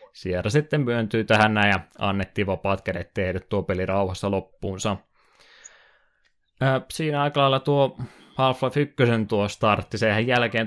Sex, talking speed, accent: male, 130 wpm, native